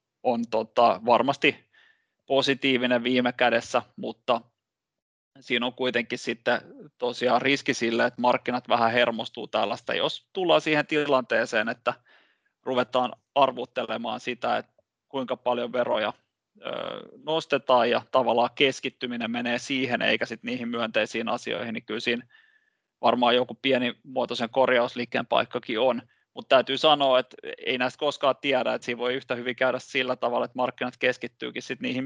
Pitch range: 120-135 Hz